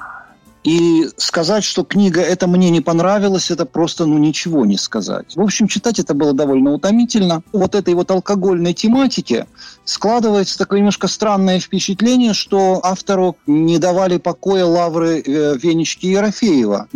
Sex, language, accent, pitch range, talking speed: male, Russian, native, 165-220 Hz, 140 wpm